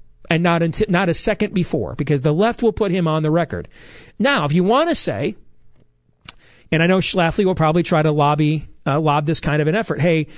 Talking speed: 225 wpm